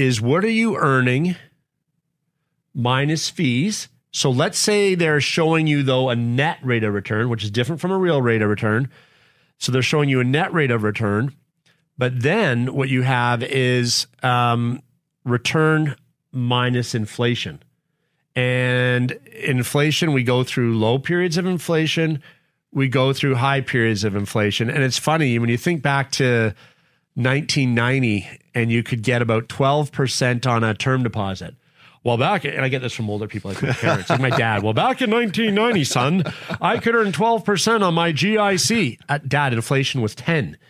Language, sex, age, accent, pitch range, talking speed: English, male, 40-59, American, 120-160 Hz, 170 wpm